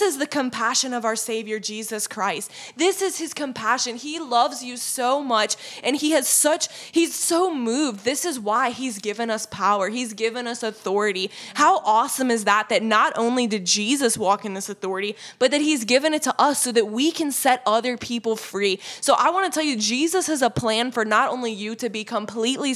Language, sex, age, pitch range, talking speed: English, female, 10-29, 220-275 Hz, 210 wpm